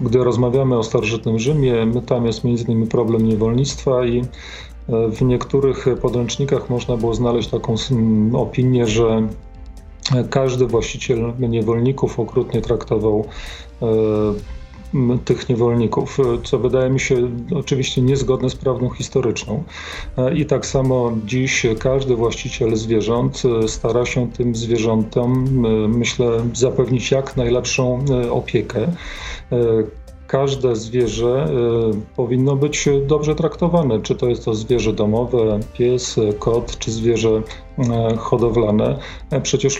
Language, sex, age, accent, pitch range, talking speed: Polish, male, 40-59, native, 115-135 Hz, 105 wpm